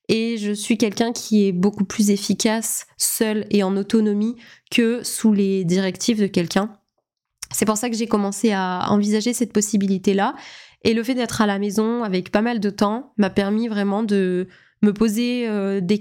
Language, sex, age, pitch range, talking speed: French, female, 20-39, 200-230 Hz, 185 wpm